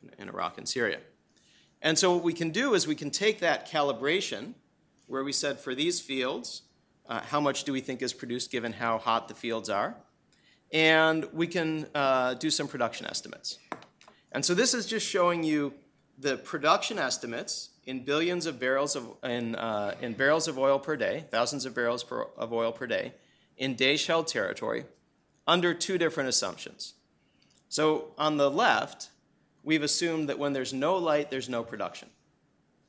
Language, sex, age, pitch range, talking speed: English, male, 40-59, 125-165 Hz, 175 wpm